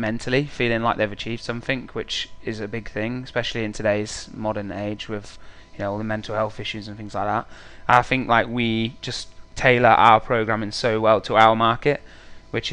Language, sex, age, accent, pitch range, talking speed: English, male, 20-39, British, 100-115 Hz, 200 wpm